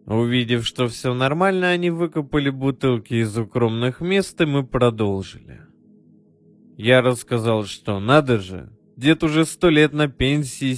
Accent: native